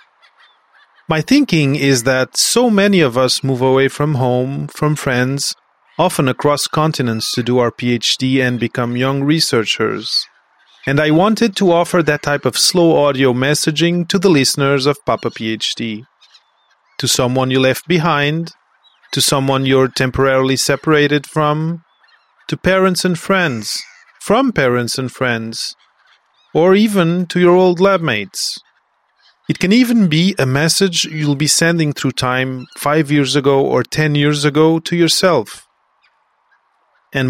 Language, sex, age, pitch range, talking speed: English, male, 30-49, 130-180 Hz, 145 wpm